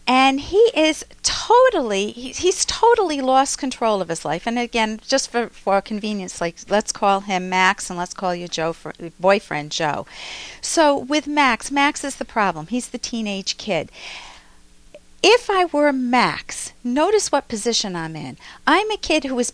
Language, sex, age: English, female, 50-69